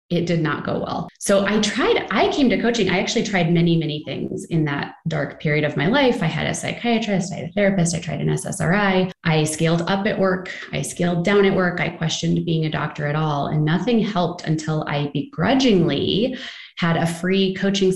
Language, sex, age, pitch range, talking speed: English, female, 20-39, 155-210 Hz, 215 wpm